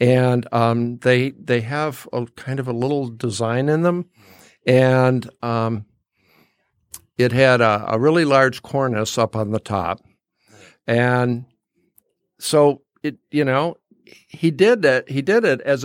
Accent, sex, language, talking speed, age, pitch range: American, male, English, 145 wpm, 60-79, 115-140 Hz